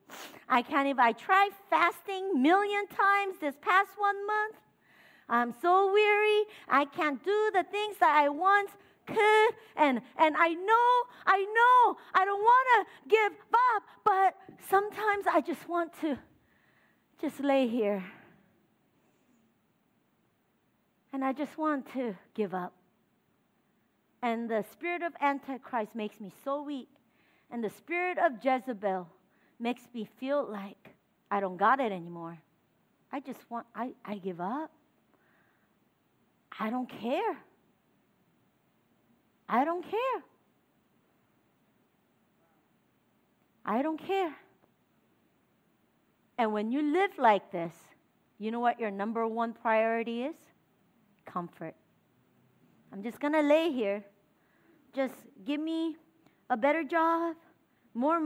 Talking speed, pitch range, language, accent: 120 wpm, 230-375 Hz, English, American